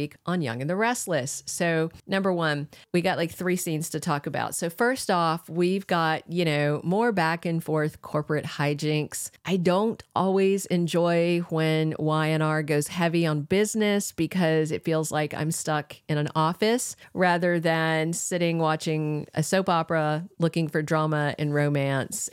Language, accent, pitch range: English, American, 150-180 Hz